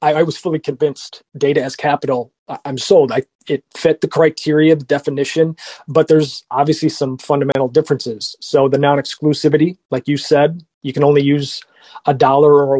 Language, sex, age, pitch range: English, male, 30-49, 140-160 Hz